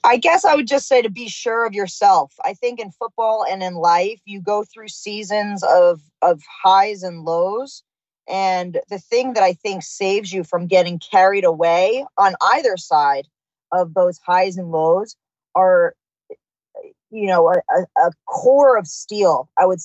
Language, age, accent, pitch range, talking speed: English, 20-39, American, 175-220 Hz, 170 wpm